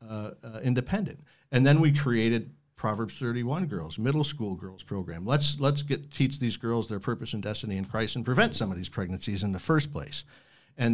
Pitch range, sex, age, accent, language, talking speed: 110-140 Hz, male, 50-69, American, English, 205 wpm